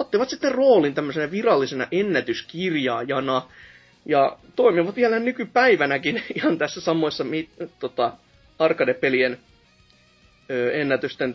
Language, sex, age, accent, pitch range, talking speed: Finnish, male, 30-49, native, 130-200 Hz, 85 wpm